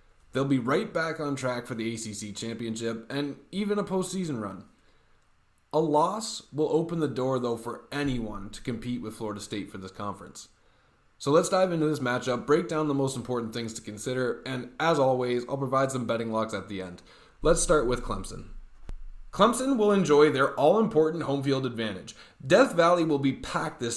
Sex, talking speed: male, 190 wpm